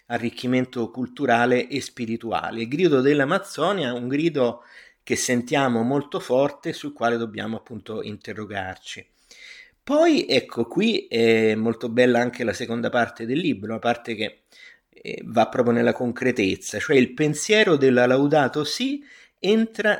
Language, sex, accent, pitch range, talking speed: Italian, male, native, 115-150 Hz, 130 wpm